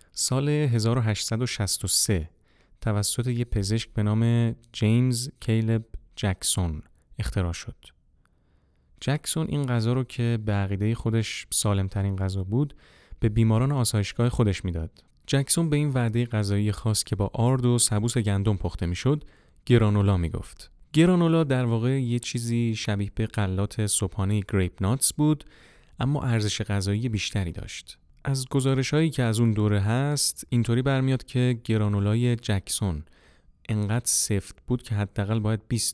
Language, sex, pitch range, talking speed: Persian, male, 100-125 Hz, 135 wpm